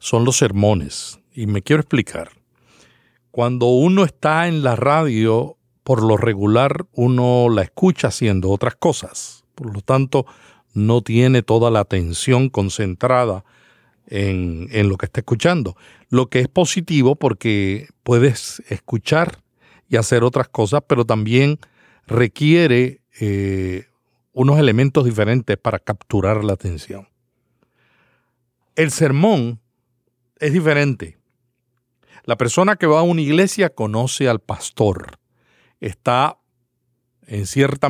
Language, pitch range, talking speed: Spanish, 110-140 Hz, 120 wpm